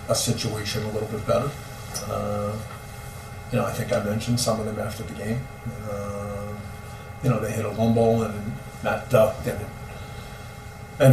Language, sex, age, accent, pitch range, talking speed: English, male, 40-59, American, 105-120 Hz, 175 wpm